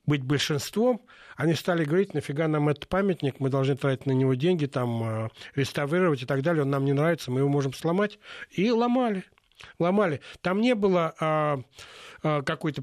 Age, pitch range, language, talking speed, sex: 60-79, 130-160 Hz, Russian, 165 wpm, male